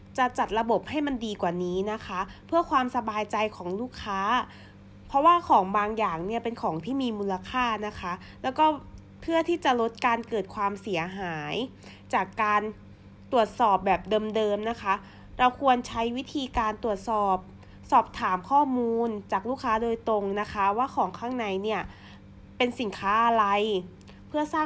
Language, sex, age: Thai, female, 20-39